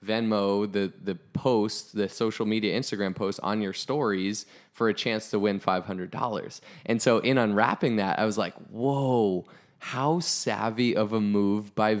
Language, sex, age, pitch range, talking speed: English, male, 20-39, 100-115 Hz, 165 wpm